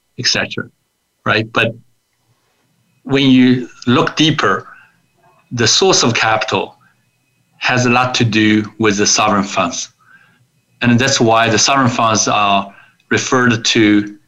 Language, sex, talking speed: English, male, 120 wpm